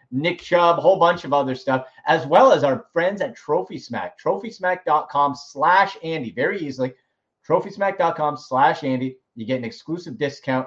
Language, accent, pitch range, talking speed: English, American, 120-160 Hz, 165 wpm